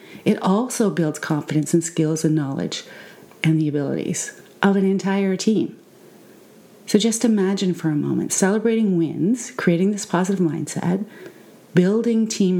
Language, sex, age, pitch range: English, female, 40-59, 170-220 Hz